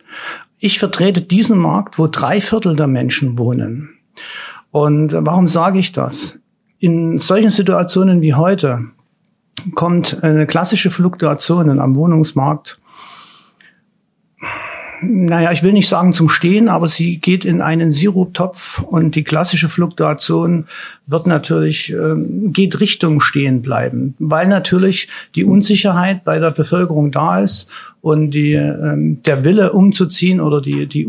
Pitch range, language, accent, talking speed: 150-190 Hz, German, German, 130 wpm